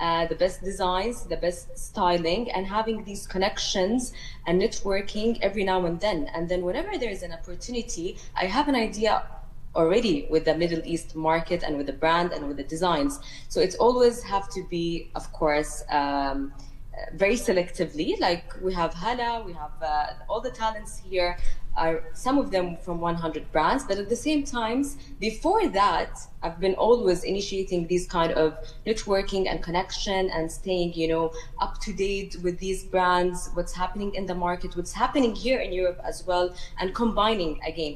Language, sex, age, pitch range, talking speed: English, female, 20-39, 160-200 Hz, 180 wpm